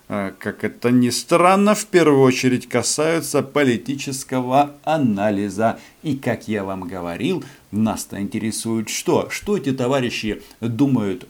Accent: native